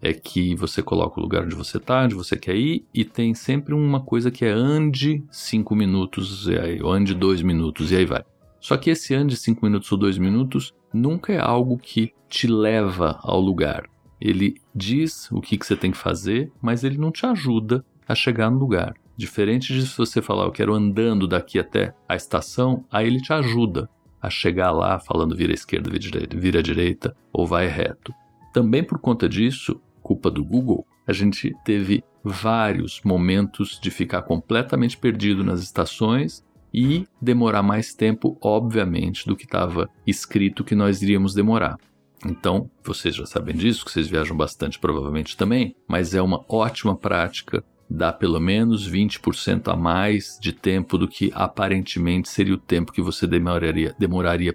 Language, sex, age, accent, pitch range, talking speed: Portuguese, male, 50-69, Brazilian, 90-120 Hz, 175 wpm